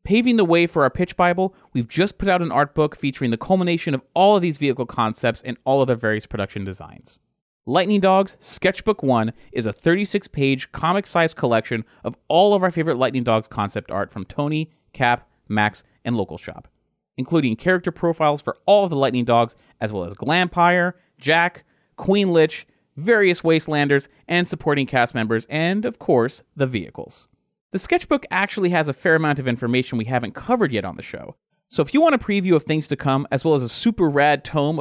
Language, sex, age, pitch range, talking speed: English, male, 30-49, 125-185 Hz, 200 wpm